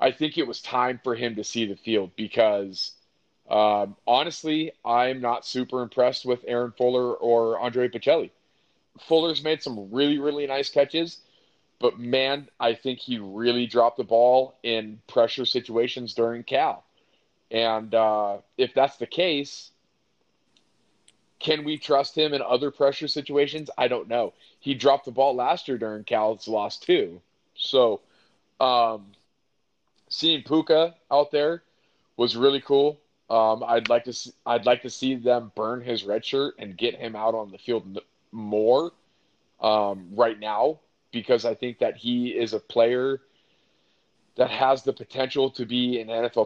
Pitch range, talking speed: 110-135 Hz, 160 wpm